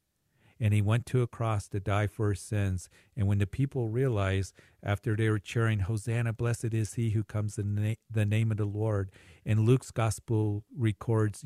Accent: American